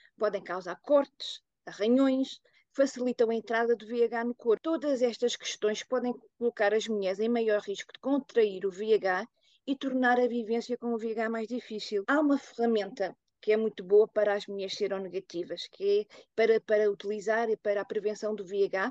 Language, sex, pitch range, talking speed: Portuguese, female, 205-250 Hz, 180 wpm